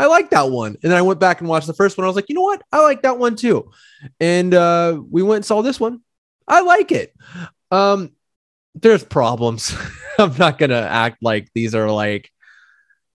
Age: 20-39